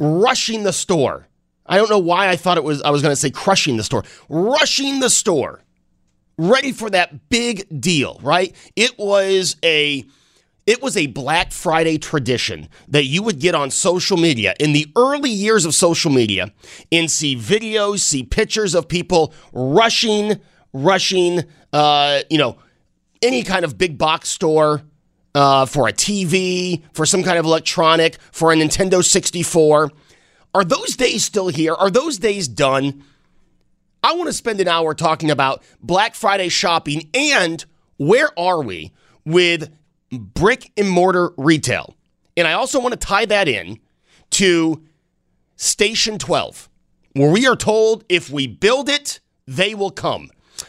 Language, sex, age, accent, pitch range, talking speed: English, male, 30-49, American, 150-200 Hz, 155 wpm